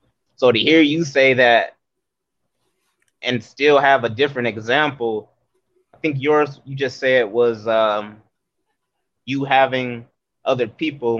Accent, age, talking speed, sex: American, 20-39, 130 wpm, male